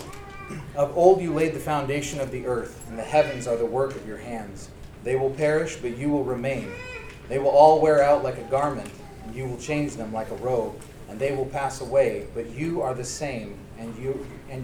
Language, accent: English, American